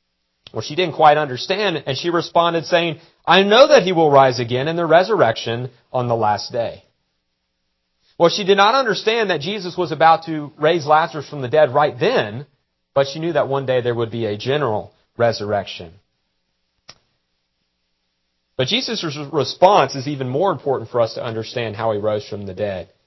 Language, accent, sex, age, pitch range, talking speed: English, American, male, 40-59, 105-155 Hz, 180 wpm